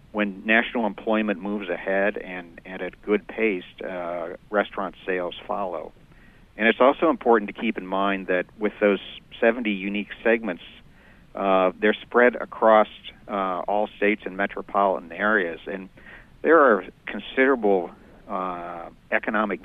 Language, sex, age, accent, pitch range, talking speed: English, male, 50-69, American, 90-105 Hz, 135 wpm